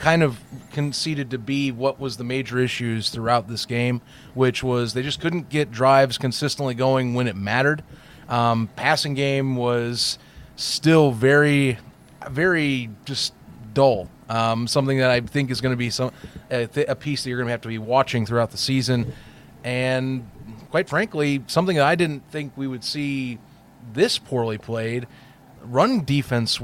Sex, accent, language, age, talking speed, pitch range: male, American, English, 30-49, 170 wpm, 120-145 Hz